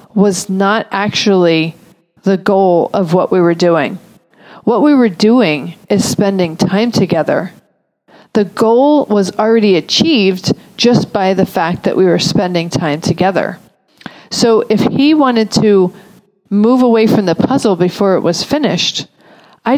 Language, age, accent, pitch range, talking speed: English, 40-59, American, 185-235 Hz, 145 wpm